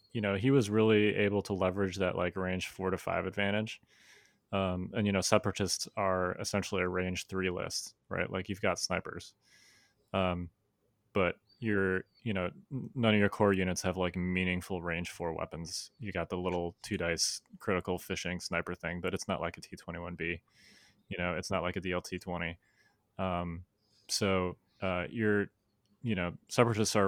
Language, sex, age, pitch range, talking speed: English, male, 20-39, 90-105 Hz, 180 wpm